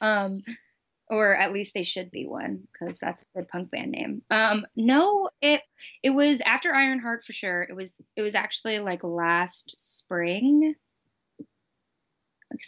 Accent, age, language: American, 20-39, English